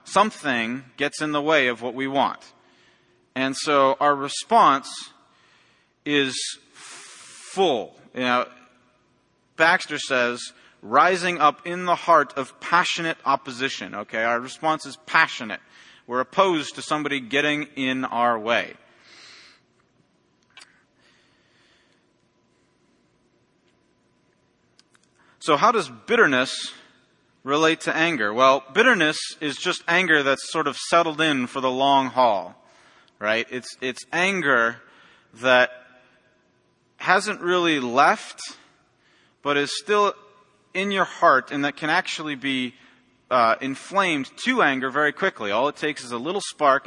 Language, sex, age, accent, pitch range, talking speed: English, male, 40-59, American, 125-160 Hz, 115 wpm